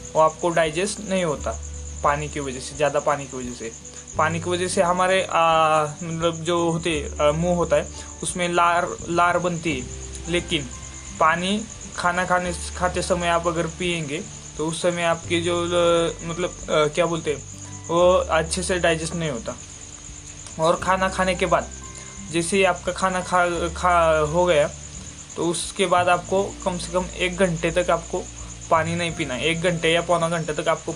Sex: male